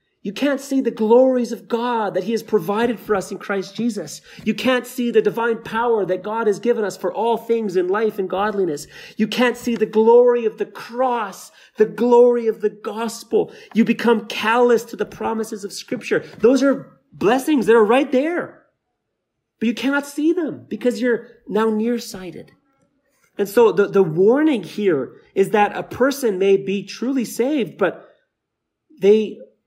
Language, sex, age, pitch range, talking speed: English, male, 30-49, 185-240 Hz, 175 wpm